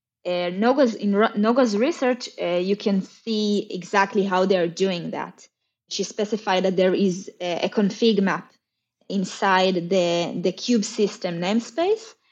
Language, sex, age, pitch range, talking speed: English, female, 20-39, 185-215 Hz, 150 wpm